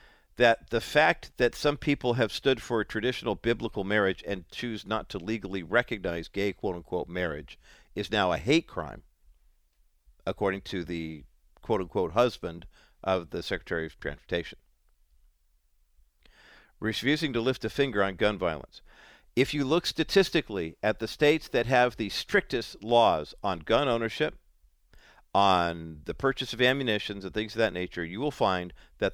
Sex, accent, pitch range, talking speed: male, American, 85-120 Hz, 155 wpm